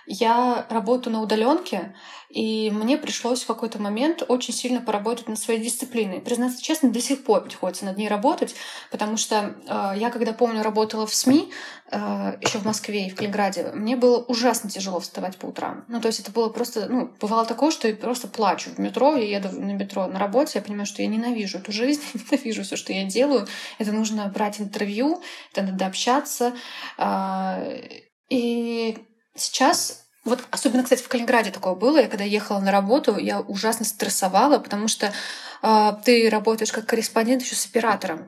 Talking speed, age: 180 wpm, 20-39